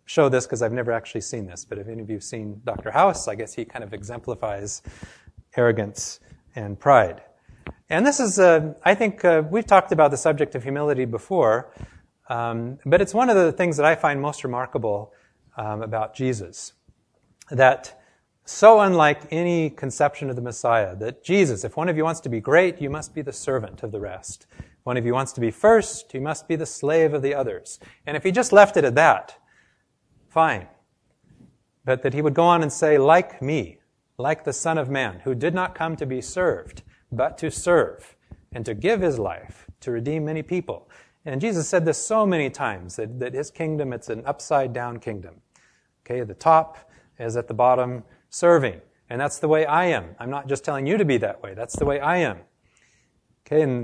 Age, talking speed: 30-49, 205 wpm